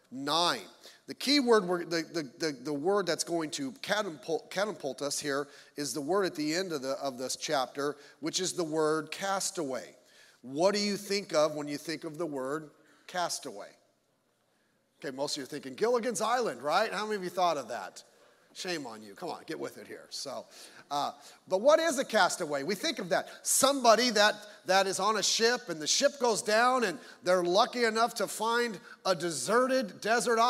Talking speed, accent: 195 wpm, American